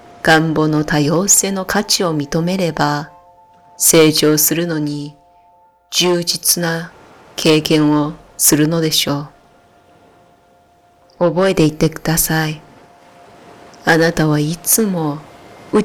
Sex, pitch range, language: female, 150-175 Hz, Japanese